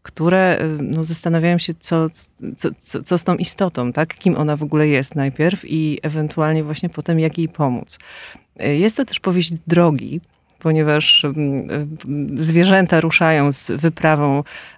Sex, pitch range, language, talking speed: female, 155-180 Hz, Polish, 140 wpm